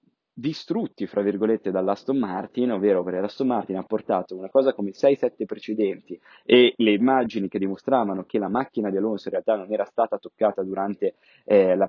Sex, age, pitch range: male, 20-39, 95-115 Hz